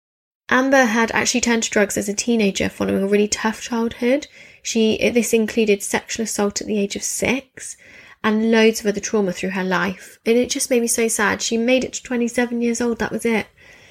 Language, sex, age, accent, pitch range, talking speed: English, female, 20-39, British, 200-235 Hz, 210 wpm